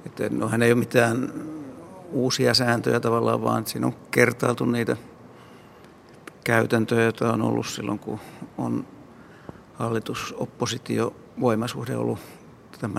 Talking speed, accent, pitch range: 110 wpm, native, 115-130 Hz